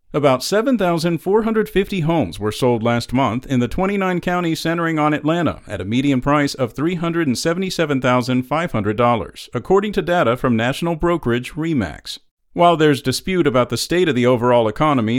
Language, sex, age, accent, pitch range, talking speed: English, male, 50-69, American, 120-170 Hz, 145 wpm